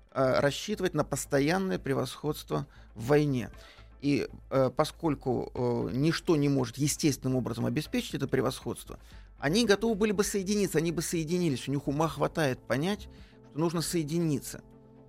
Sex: male